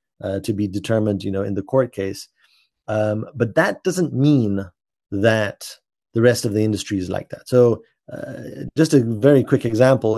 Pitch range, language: 105-135 Hz, English